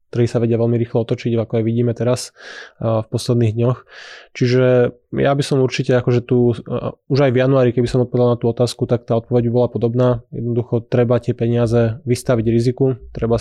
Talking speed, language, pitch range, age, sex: 200 wpm, Slovak, 115-125 Hz, 20-39, male